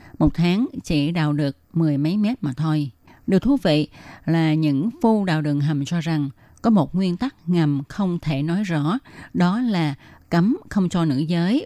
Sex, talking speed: female, 190 wpm